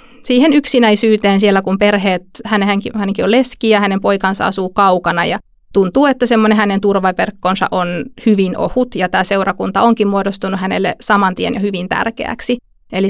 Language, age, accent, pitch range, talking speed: Finnish, 20-39, native, 195-230 Hz, 160 wpm